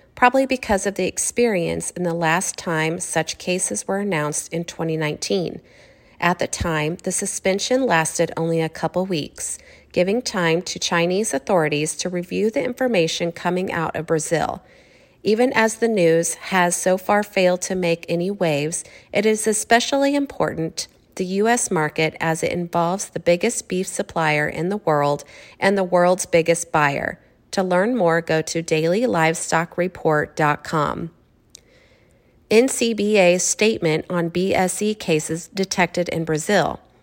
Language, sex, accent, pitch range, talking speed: English, female, American, 165-200 Hz, 140 wpm